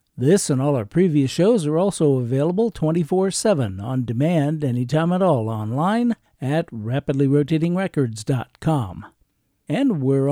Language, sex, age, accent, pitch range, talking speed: English, male, 50-69, American, 130-165 Hz, 115 wpm